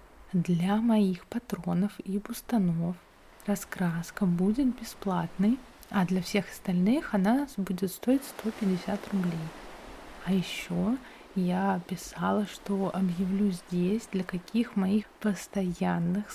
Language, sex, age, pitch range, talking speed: Russian, female, 20-39, 180-210 Hz, 105 wpm